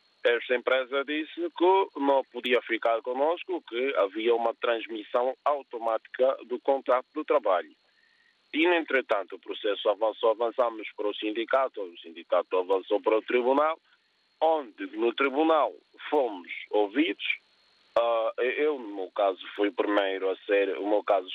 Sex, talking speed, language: male, 135 wpm, Portuguese